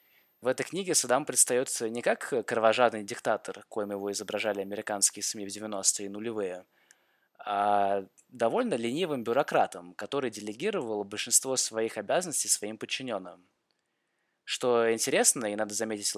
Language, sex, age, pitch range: Russian, male, 20-39, 100-120 Hz